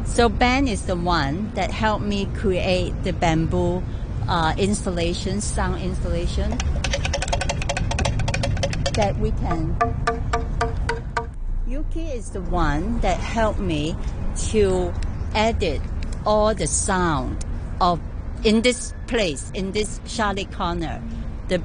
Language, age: English, 50-69